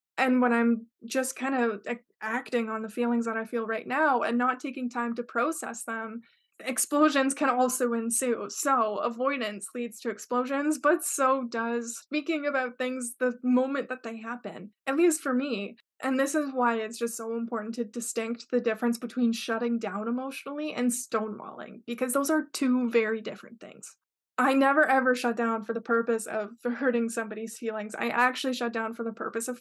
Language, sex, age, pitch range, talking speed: English, female, 20-39, 230-260 Hz, 185 wpm